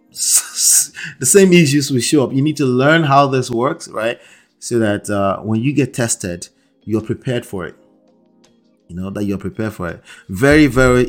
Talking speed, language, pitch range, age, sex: 185 wpm, English, 105-130 Hz, 30-49, male